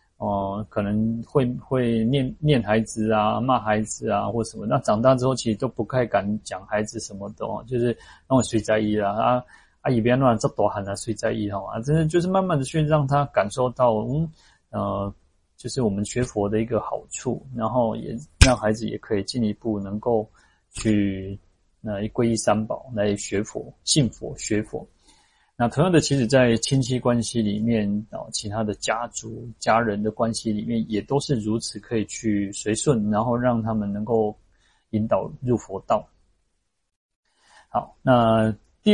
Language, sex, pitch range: Chinese, male, 105-125 Hz